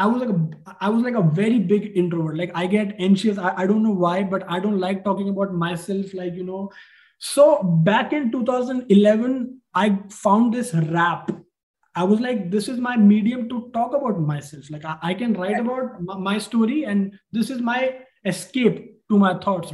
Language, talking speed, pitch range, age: Hindi, 205 wpm, 185-240 Hz, 20-39